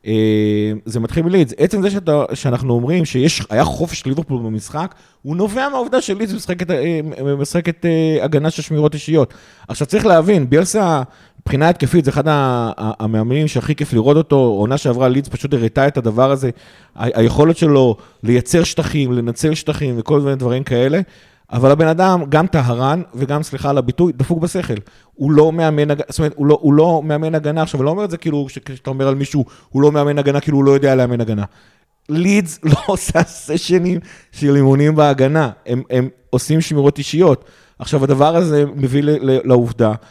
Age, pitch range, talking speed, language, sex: 30-49, 125-155 Hz, 170 wpm, Hebrew, male